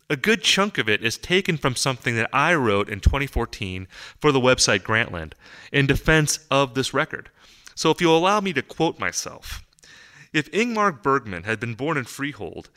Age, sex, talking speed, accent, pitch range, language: 30-49, male, 185 wpm, American, 110-155 Hz, English